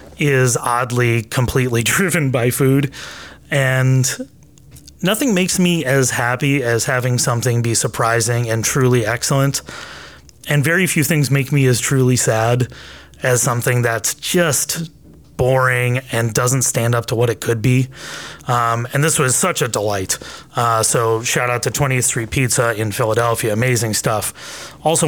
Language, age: English, 30-49